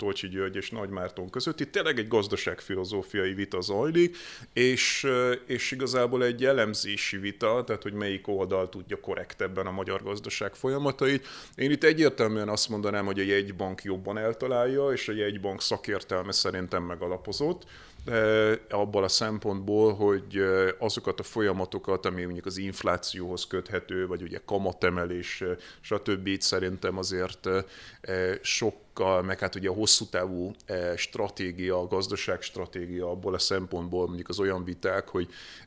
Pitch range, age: 90-105 Hz, 30-49